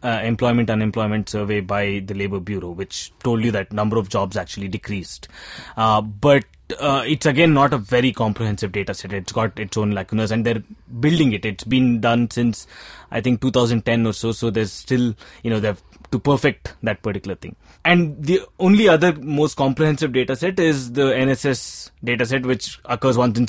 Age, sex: 20-39, male